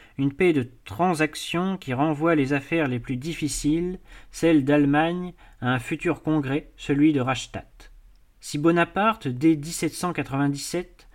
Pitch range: 130-170 Hz